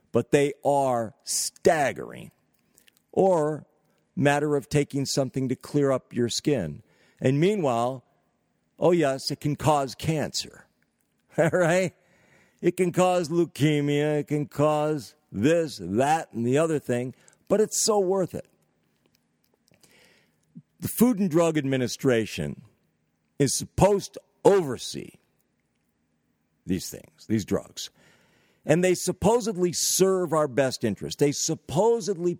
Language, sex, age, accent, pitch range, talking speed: English, male, 50-69, American, 125-175 Hz, 115 wpm